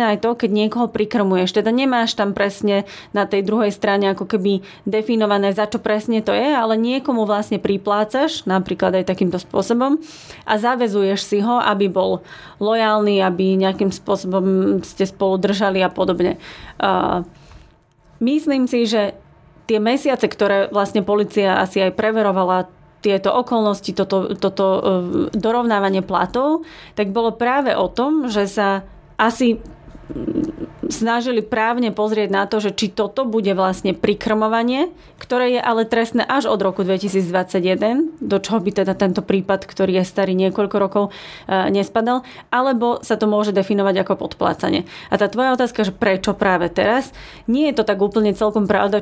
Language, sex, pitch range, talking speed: Slovak, female, 195-230 Hz, 150 wpm